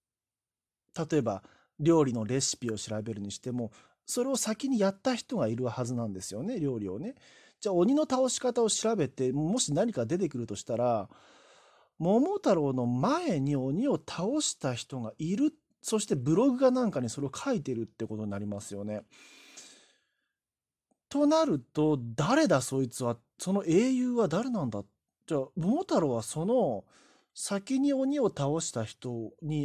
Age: 40-59